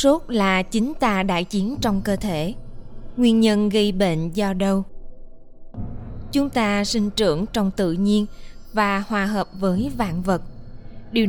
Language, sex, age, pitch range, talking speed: Vietnamese, female, 20-39, 180-220 Hz, 155 wpm